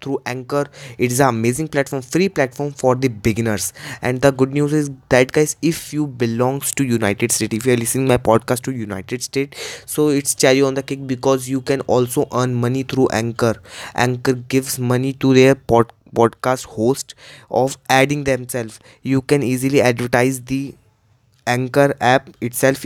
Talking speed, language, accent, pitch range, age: 175 wpm, Hindi, native, 120-140 Hz, 20-39